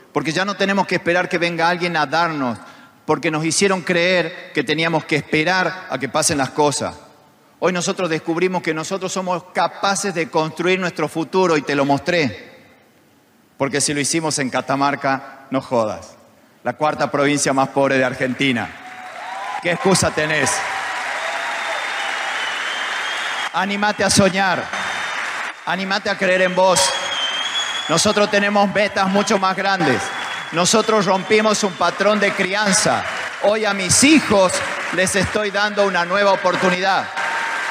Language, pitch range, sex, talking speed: Spanish, 165-210 Hz, male, 140 wpm